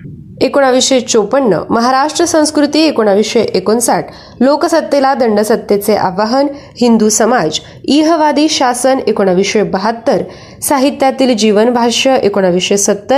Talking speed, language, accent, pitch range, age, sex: 75 wpm, Marathi, native, 205-275 Hz, 20-39, female